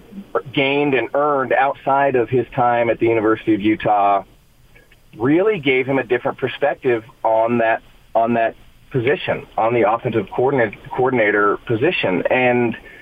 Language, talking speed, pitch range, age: English, 135 wpm, 115-135 Hz, 40-59